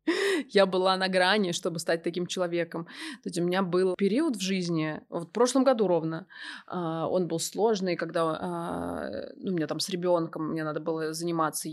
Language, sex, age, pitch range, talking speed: Russian, female, 20-39, 175-230 Hz, 175 wpm